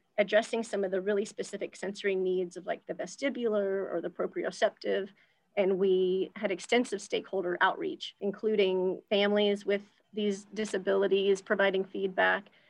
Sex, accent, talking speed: female, American, 130 wpm